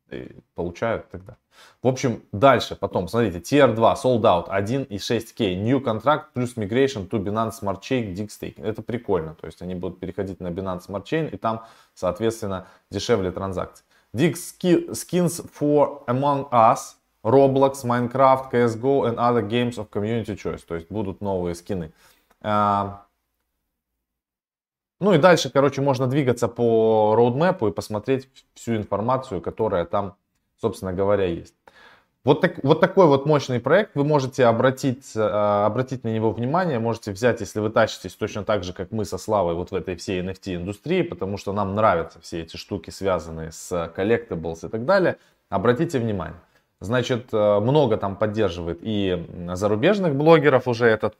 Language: Russian